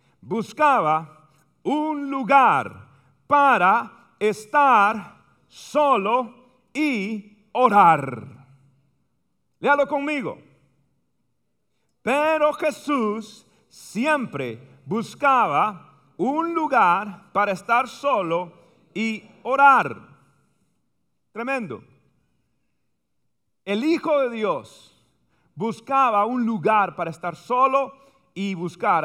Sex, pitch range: male, 190-270 Hz